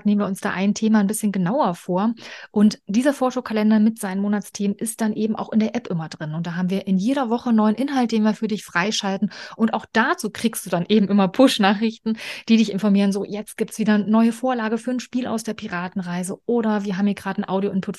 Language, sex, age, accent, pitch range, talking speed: German, female, 30-49, German, 190-220 Hz, 240 wpm